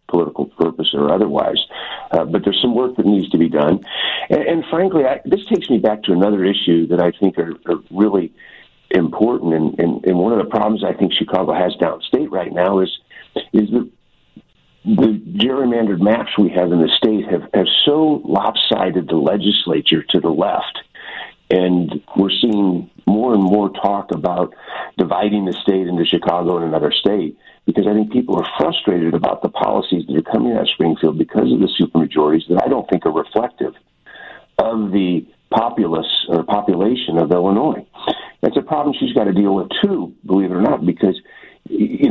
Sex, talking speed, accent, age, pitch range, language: male, 185 wpm, American, 50-69, 85-105 Hz, English